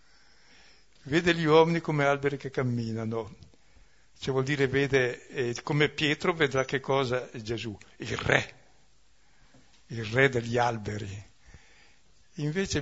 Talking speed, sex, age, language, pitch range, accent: 120 wpm, male, 60-79, Italian, 115-145 Hz, native